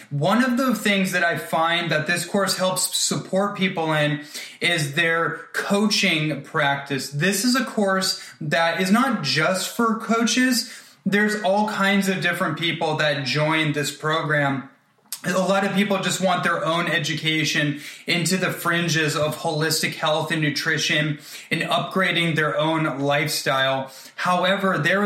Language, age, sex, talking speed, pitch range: English, 20-39, male, 150 wpm, 150-185 Hz